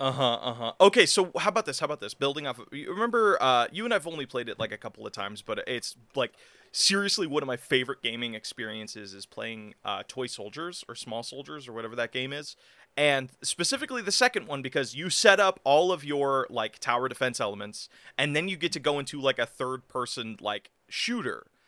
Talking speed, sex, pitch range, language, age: 220 wpm, male, 120-150 Hz, English, 30-49